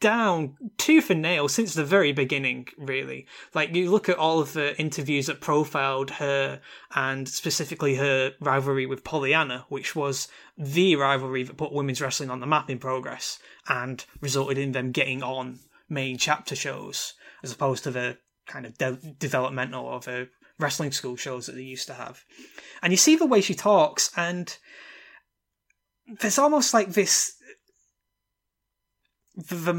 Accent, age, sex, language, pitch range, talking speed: British, 20-39, male, English, 135-185 Hz, 155 wpm